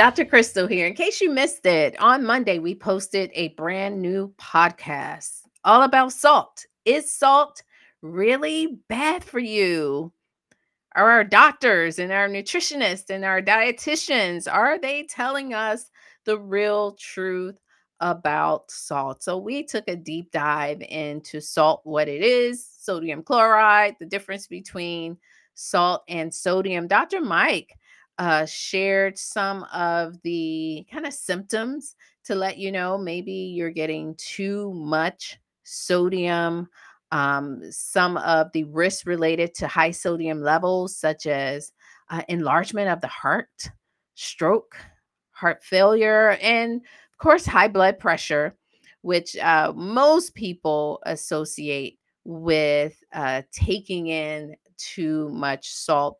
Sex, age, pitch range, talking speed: female, 40-59, 160-220 Hz, 130 wpm